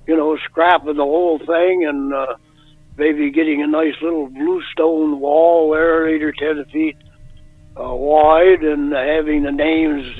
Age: 60-79